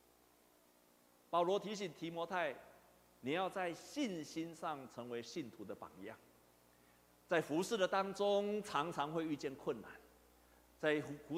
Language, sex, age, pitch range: Chinese, male, 50-69, 195-270 Hz